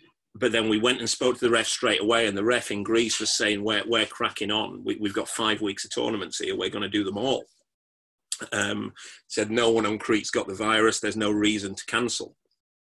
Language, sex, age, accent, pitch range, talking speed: English, male, 30-49, British, 95-110 Hz, 235 wpm